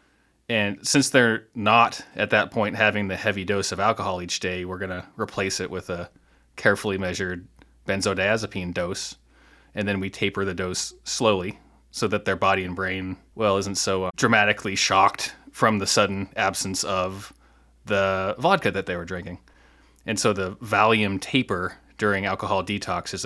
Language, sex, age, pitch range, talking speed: English, male, 30-49, 90-105 Hz, 165 wpm